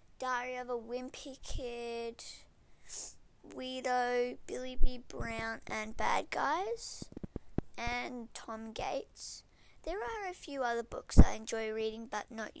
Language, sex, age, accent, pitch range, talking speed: English, female, 20-39, Australian, 225-265 Hz, 125 wpm